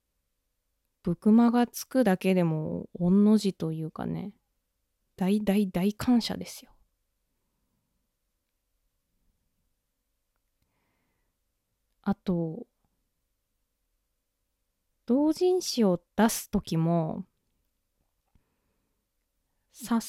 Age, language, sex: 20-39, Japanese, female